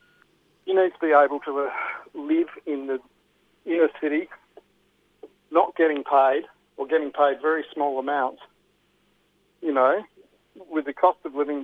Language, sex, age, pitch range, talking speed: English, male, 50-69, 140-180 Hz, 145 wpm